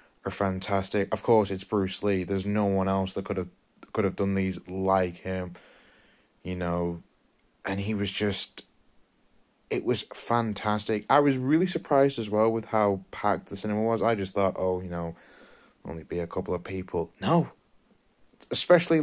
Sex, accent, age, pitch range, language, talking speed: male, British, 10-29, 95-115 Hz, English, 175 wpm